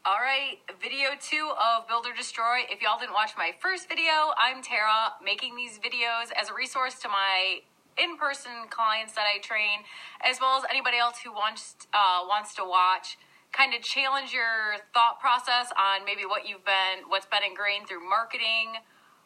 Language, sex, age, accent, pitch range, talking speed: English, female, 20-39, American, 200-255 Hz, 180 wpm